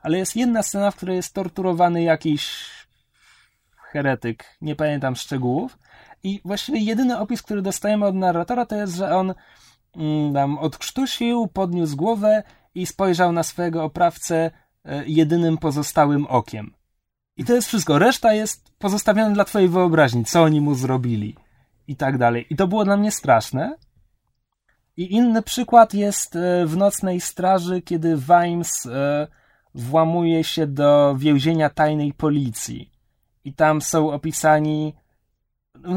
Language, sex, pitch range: Polish, male, 145-195 Hz